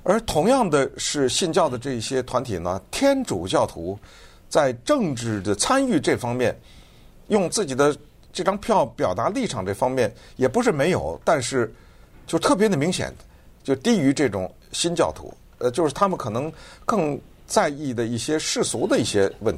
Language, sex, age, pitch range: Chinese, male, 50-69, 110-175 Hz